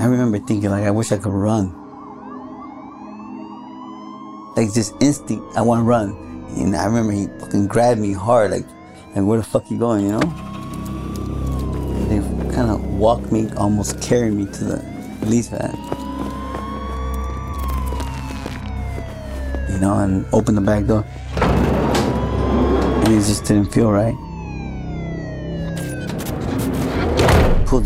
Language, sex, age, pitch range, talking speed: English, male, 30-49, 95-115 Hz, 130 wpm